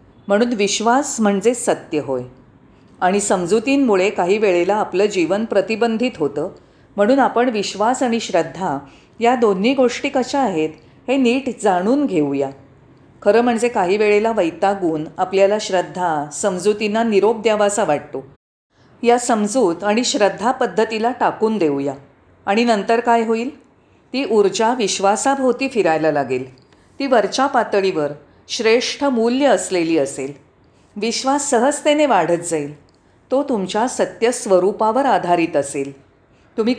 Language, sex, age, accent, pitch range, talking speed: Marathi, female, 40-59, native, 170-245 Hz, 115 wpm